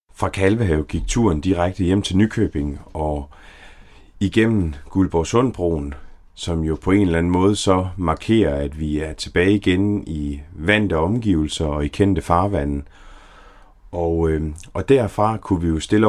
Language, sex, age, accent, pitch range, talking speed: Danish, male, 30-49, native, 80-105 Hz, 145 wpm